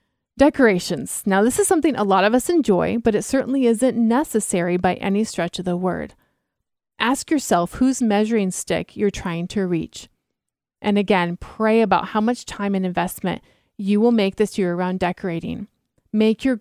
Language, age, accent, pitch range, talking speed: English, 30-49, American, 185-235 Hz, 175 wpm